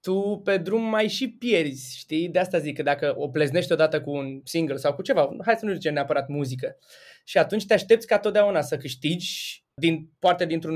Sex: male